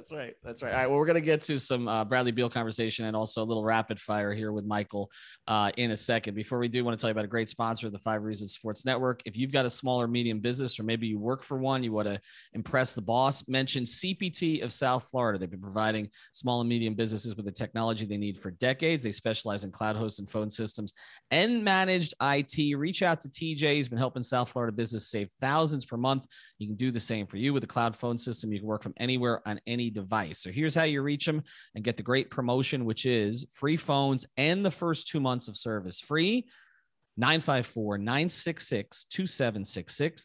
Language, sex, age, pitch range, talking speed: English, male, 30-49, 110-140 Hz, 235 wpm